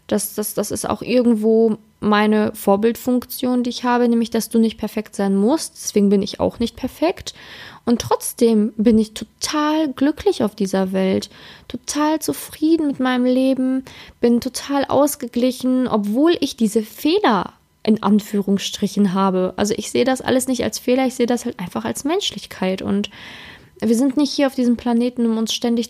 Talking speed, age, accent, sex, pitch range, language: 170 wpm, 20-39, German, female, 215-260 Hz, German